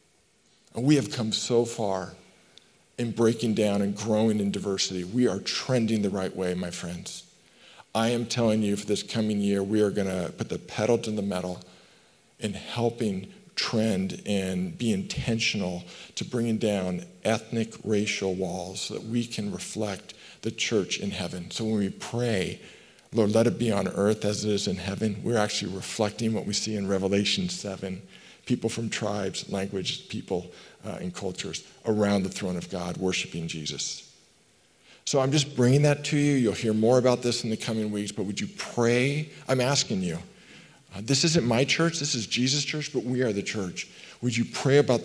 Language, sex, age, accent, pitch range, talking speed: English, male, 50-69, American, 100-120 Hz, 185 wpm